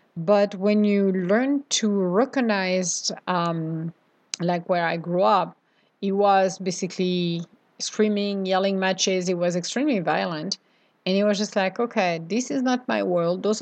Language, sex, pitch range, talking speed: English, female, 185-230 Hz, 150 wpm